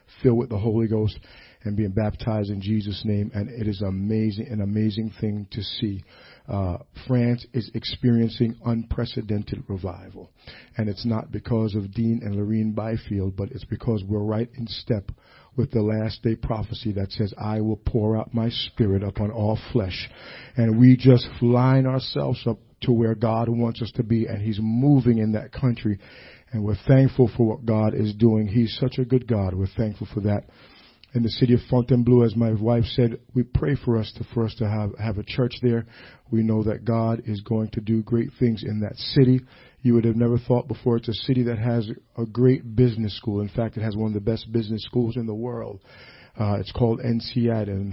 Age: 50-69